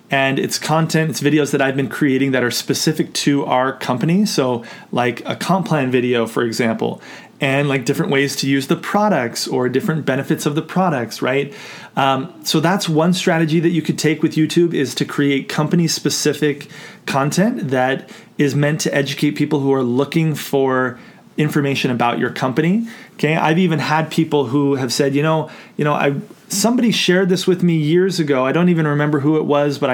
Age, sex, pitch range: 30-49, male, 135-165 Hz